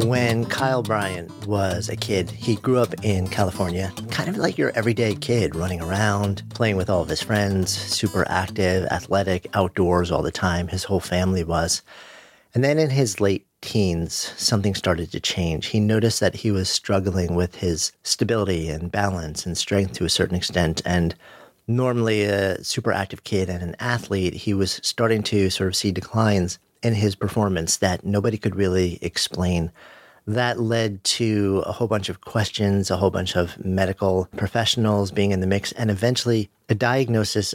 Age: 40-59